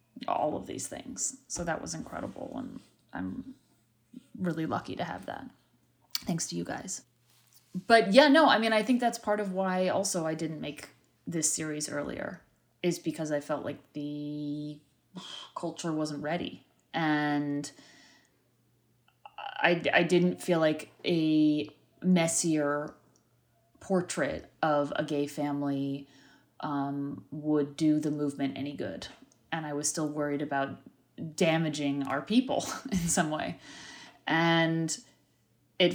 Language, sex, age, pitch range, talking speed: English, female, 30-49, 145-170 Hz, 135 wpm